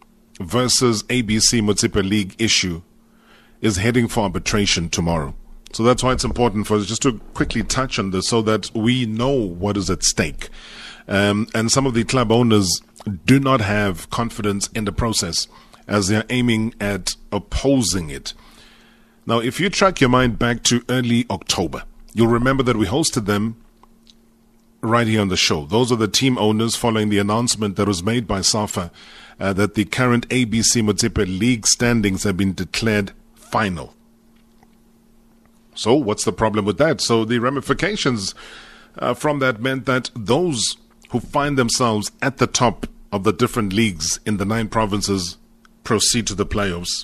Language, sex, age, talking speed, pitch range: English, male, 30-49, 165 wpm, 100-120 Hz